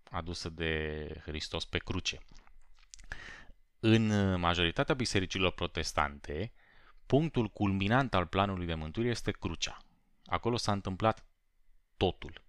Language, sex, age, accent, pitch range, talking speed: Romanian, male, 20-39, native, 80-100 Hz, 100 wpm